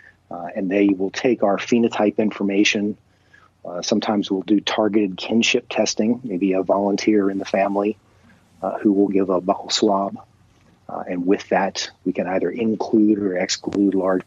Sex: male